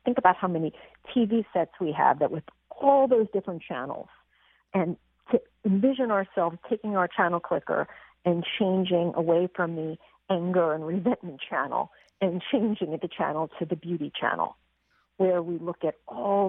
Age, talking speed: 50-69, 160 wpm